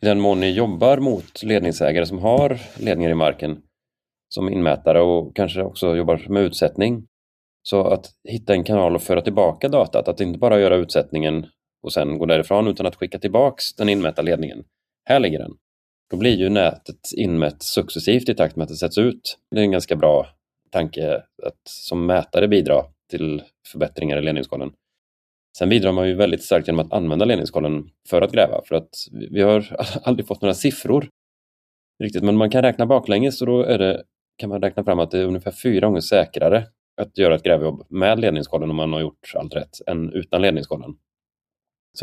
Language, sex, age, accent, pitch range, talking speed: Swedish, male, 30-49, native, 80-105 Hz, 190 wpm